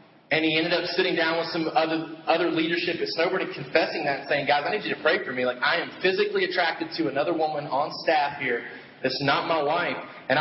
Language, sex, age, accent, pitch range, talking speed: English, male, 30-49, American, 155-190 Hz, 240 wpm